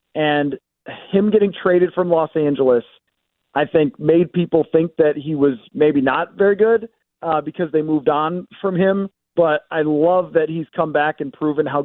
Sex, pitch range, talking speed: male, 150-185 Hz, 180 wpm